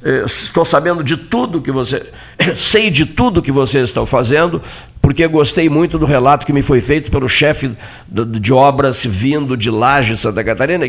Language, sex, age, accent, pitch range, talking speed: Portuguese, male, 50-69, Brazilian, 110-145 Hz, 180 wpm